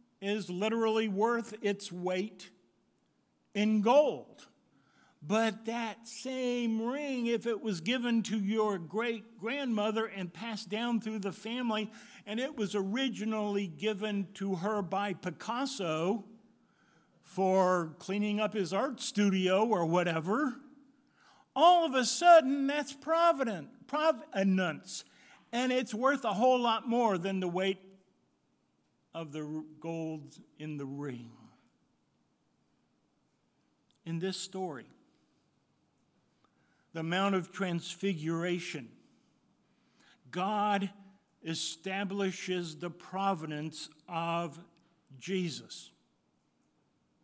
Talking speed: 95 wpm